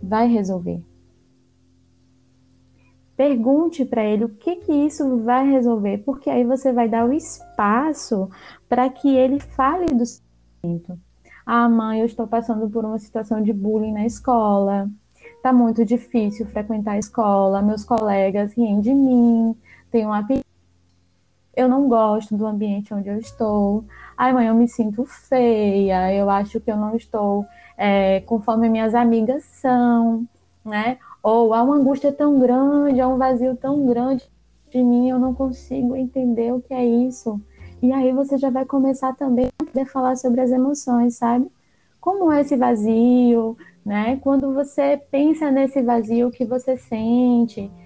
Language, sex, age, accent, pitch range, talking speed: Portuguese, female, 10-29, Brazilian, 210-260 Hz, 160 wpm